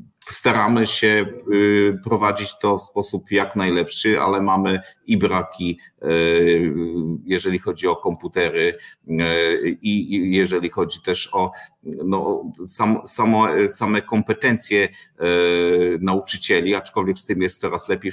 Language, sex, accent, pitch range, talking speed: Polish, male, native, 85-100 Hz, 110 wpm